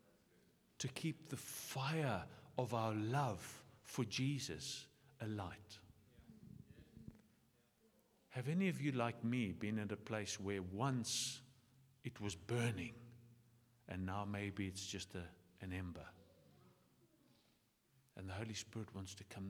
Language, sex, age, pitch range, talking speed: English, male, 50-69, 105-175 Hz, 125 wpm